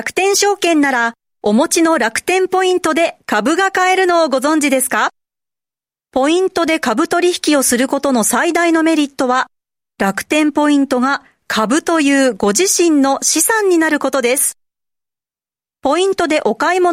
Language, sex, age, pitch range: Japanese, female, 40-59, 255-340 Hz